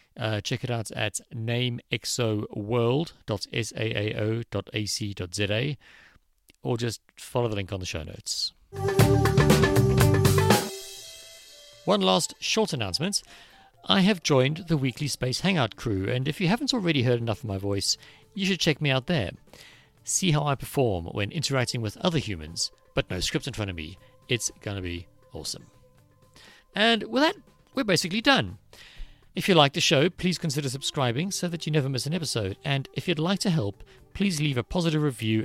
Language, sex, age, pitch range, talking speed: English, male, 50-69, 105-150 Hz, 165 wpm